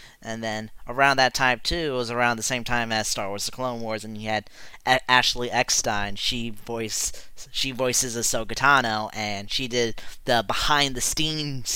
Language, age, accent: English, 20-39, American